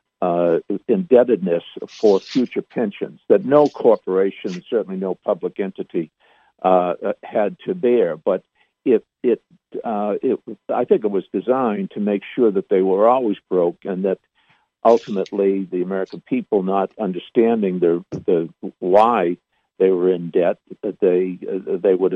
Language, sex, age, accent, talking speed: English, male, 60-79, American, 145 wpm